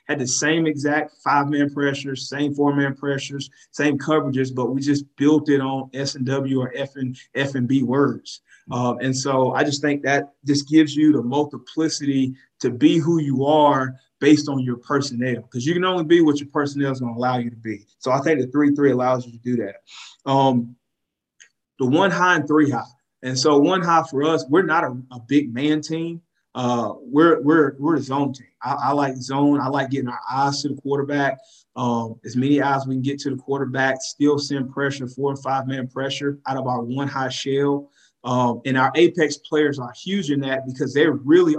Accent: American